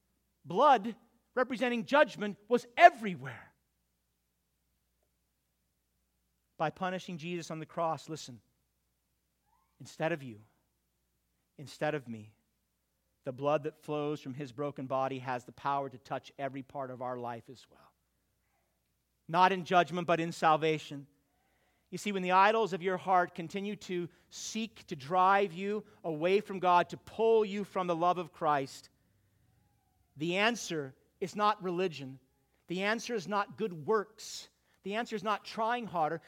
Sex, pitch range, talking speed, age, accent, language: male, 120-200 Hz, 140 wpm, 40-59, American, English